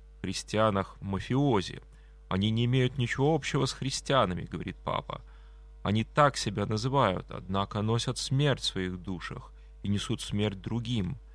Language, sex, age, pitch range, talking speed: Russian, male, 20-39, 90-125 Hz, 130 wpm